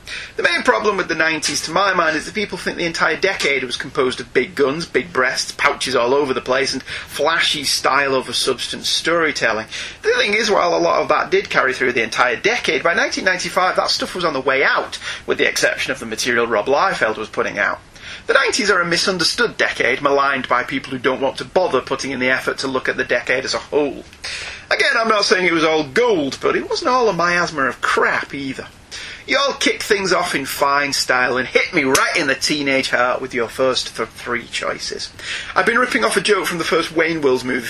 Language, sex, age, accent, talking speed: English, male, 30-49, British, 230 wpm